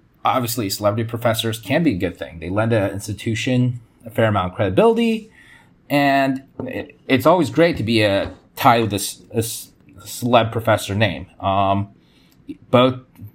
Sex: male